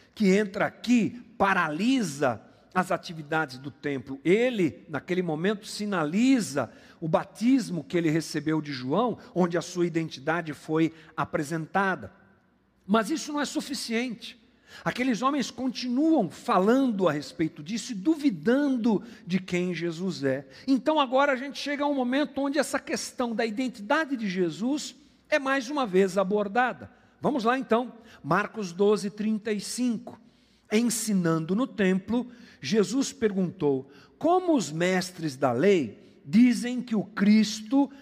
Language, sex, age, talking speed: Portuguese, male, 50-69, 130 wpm